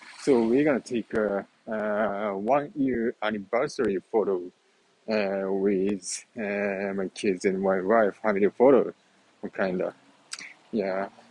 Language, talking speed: English, 110 wpm